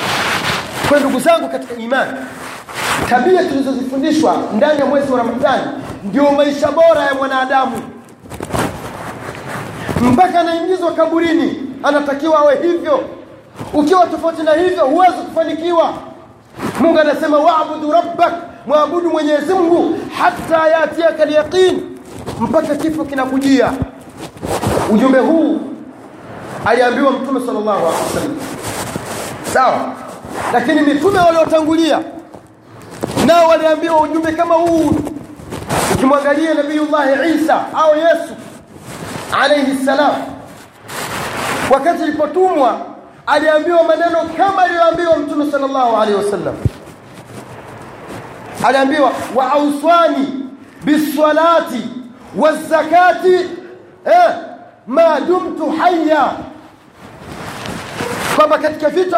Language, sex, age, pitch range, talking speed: Swahili, male, 40-59, 280-330 Hz, 90 wpm